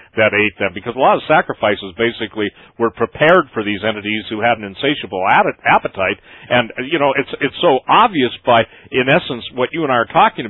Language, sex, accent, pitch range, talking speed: English, male, American, 105-135 Hz, 205 wpm